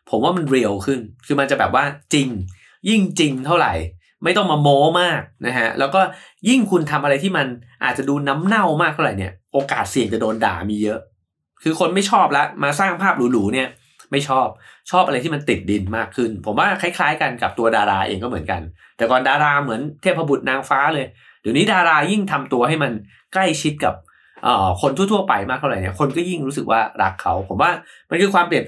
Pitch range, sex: 120-170 Hz, male